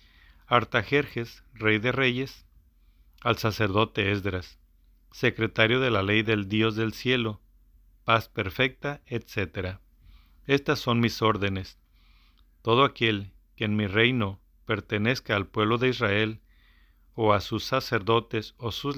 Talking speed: 125 wpm